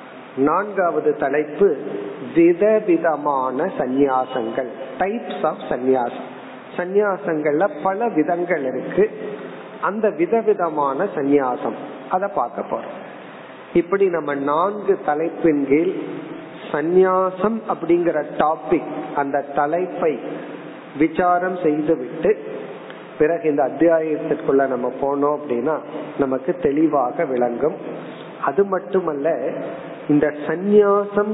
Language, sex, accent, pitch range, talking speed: Tamil, male, native, 140-185 Hz, 45 wpm